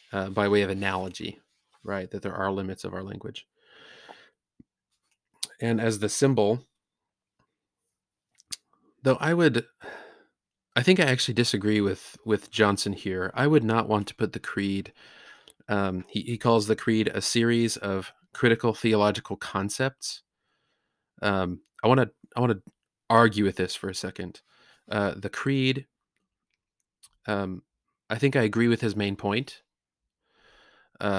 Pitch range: 95-115 Hz